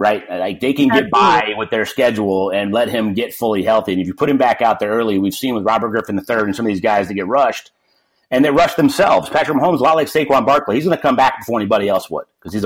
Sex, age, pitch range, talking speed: male, 30-49, 105-165 Hz, 285 wpm